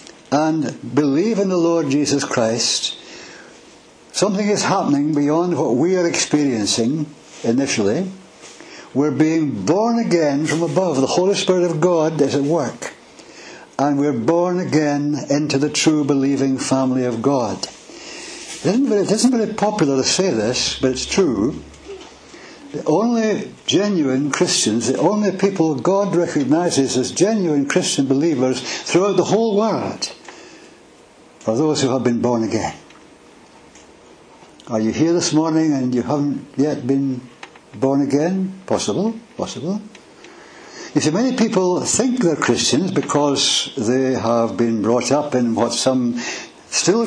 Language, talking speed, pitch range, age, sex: English, 135 wpm, 135-185 Hz, 60-79, male